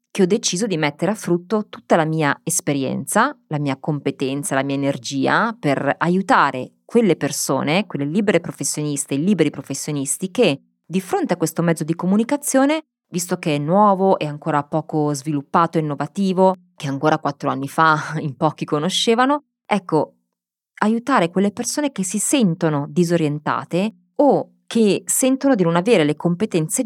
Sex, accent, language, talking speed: female, native, Italian, 155 wpm